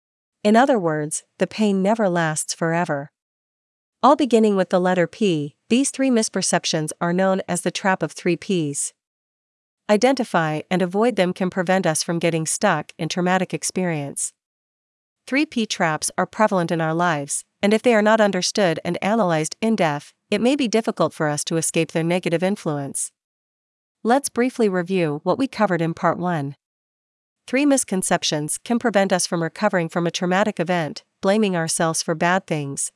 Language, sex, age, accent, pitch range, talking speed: English, female, 40-59, American, 165-205 Hz, 165 wpm